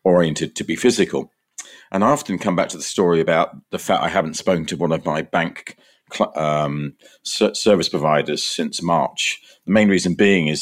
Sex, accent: male, British